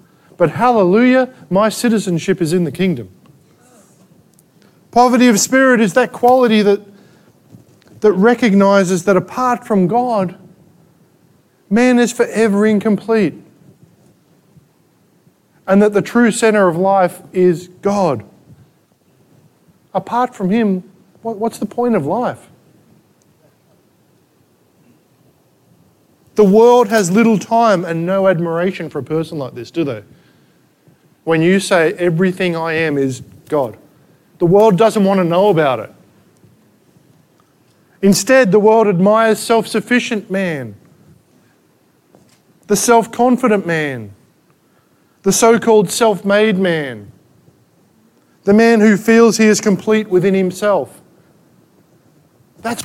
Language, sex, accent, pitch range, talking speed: English, male, Australian, 170-220 Hz, 110 wpm